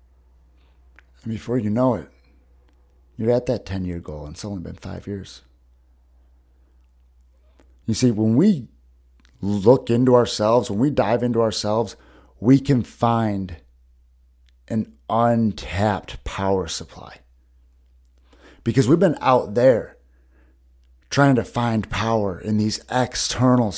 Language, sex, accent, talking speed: English, male, American, 120 wpm